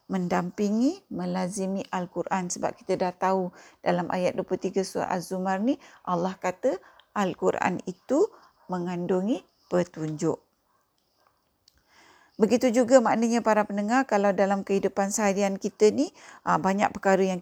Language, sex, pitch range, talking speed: Malay, female, 180-225 Hz, 115 wpm